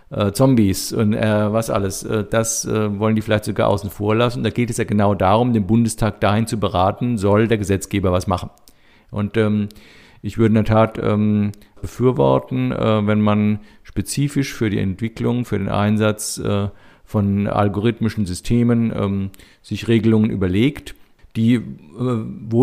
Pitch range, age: 105-120 Hz, 50-69